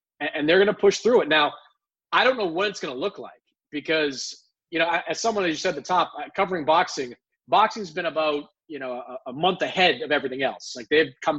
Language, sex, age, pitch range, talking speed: English, male, 30-49, 160-205 Hz, 230 wpm